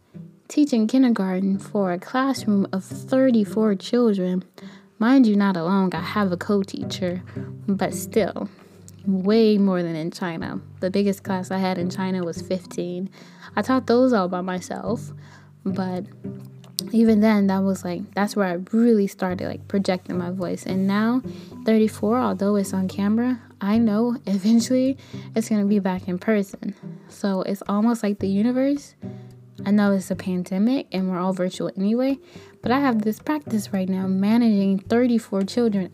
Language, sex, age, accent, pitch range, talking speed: English, female, 10-29, American, 185-225 Hz, 160 wpm